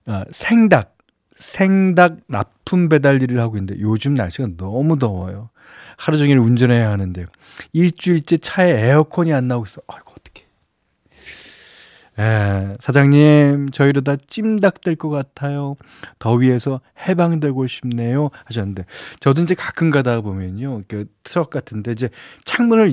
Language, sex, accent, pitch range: Korean, male, native, 115-160 Hz